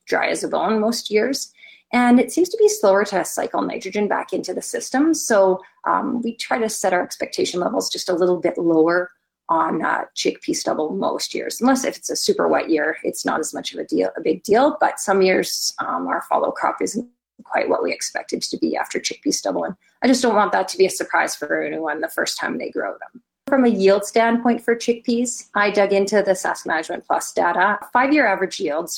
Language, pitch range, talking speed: English, 180-245 Hz, 230 wpm